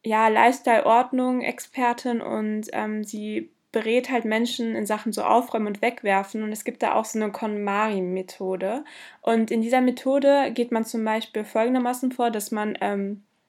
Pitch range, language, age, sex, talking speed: 210-240 Hz, German, 20-39, female, 155 wpm